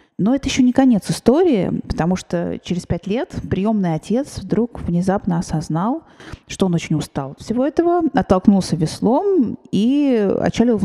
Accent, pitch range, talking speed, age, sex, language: native, 175-235 Hz, 155 wpm, 30-49, female, Russian